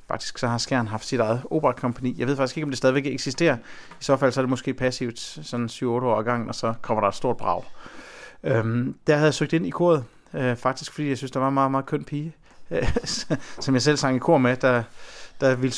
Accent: native